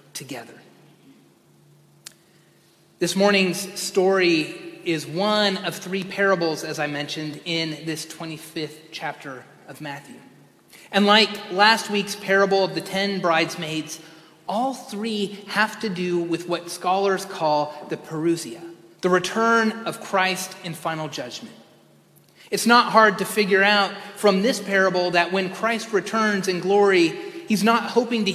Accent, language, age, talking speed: American, English, 30-49, 135 wpm